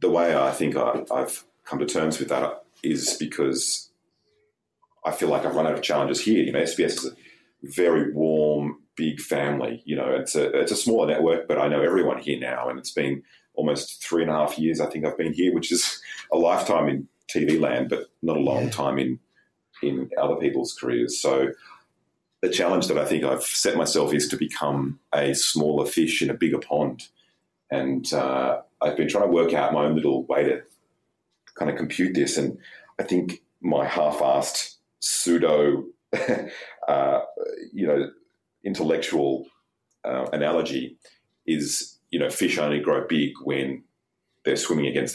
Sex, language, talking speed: male, English, 180 wpm